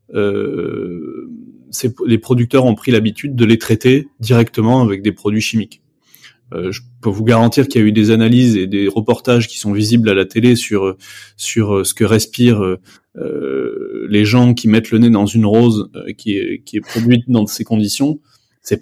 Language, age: French, 20-39